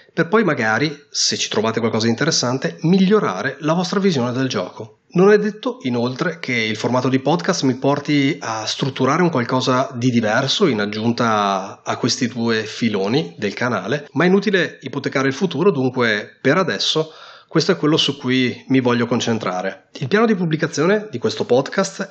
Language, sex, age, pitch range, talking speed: Italian, male, 30-49, 120-160 Hz, 175 wpm